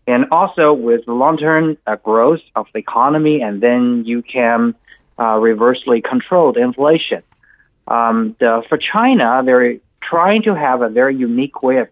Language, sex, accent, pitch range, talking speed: English, male, American, 120-155 Hz, 155 wpm